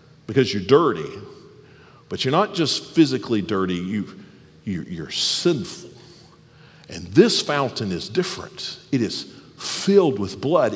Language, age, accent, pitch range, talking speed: English, 50-69, American, 130-185 Hz, 130 wpm